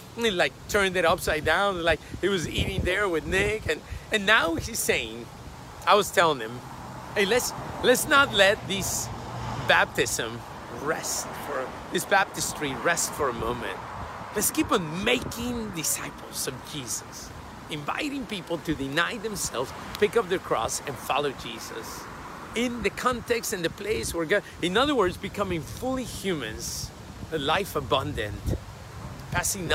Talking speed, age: 145 wpm, 40-59